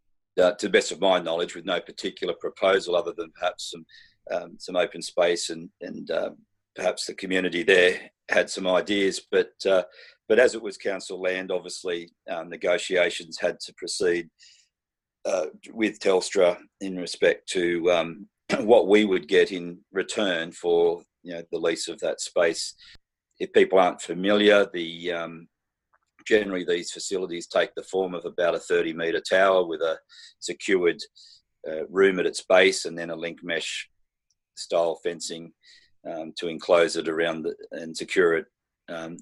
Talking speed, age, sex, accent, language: 160 wpm, 40-59, male, Australian, English